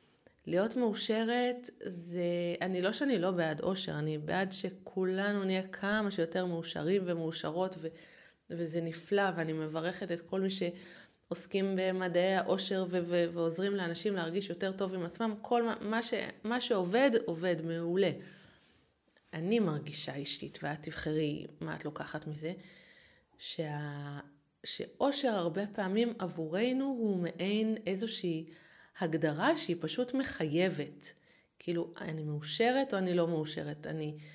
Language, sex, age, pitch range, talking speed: Hebrew, female, 20-39, 165-210 Hz, 125 wpm